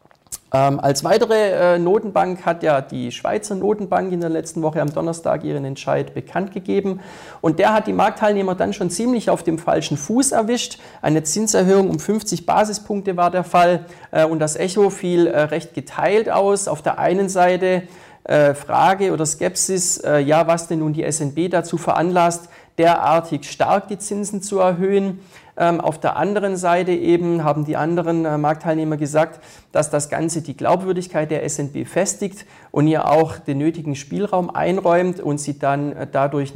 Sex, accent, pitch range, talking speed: male, German, 150-185 Hz, 160 wpm